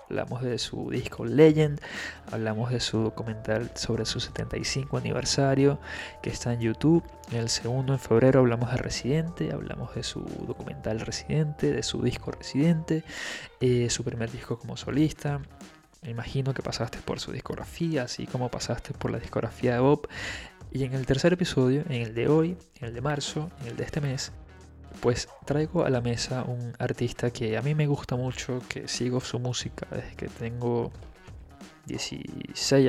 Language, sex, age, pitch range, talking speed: Spanish, male, 20-39, 120-135 Hz, 170 wpm